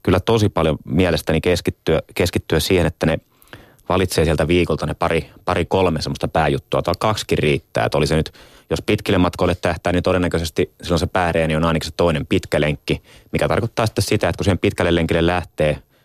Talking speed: 175 wpm